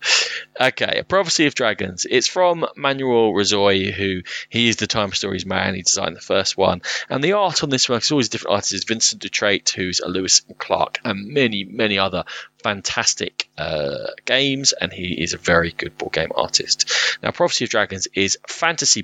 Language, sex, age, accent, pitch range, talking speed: English, male, 20-39, British, 100-135 Hz, 190 wpm